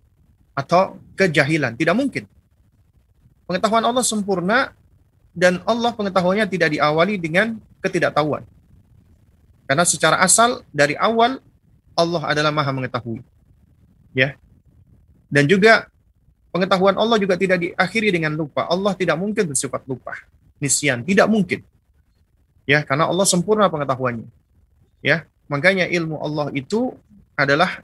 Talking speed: 110 wpm